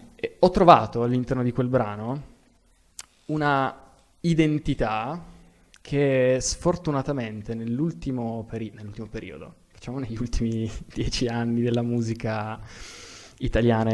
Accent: native